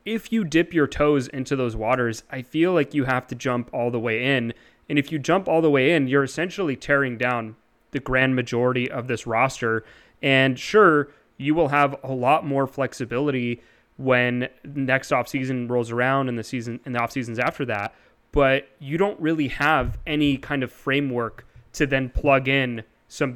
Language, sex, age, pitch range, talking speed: English, male, 20-39, 125-150 Hz, 190 wpm